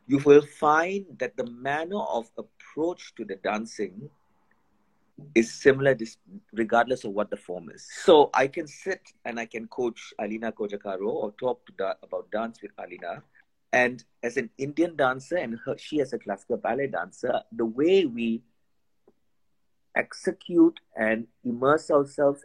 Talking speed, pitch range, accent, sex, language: 145 wpm, 115-150 Hz, Indian, male, English